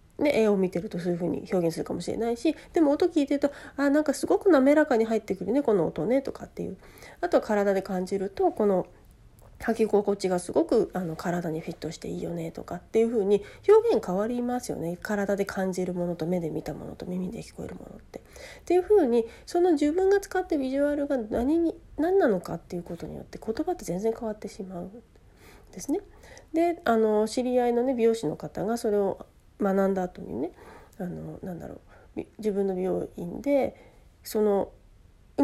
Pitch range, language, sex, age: 185-275 Hz, Japanese, female, 40-59